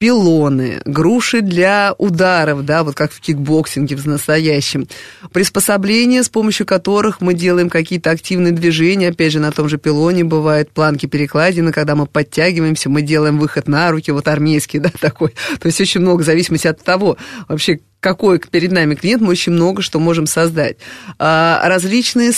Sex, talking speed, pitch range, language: female, 165 wpm, 155-180 Hz, Russian